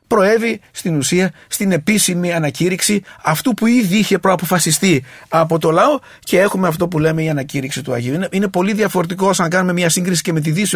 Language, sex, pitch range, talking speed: English, male, 140-175 Hz, 195 wpm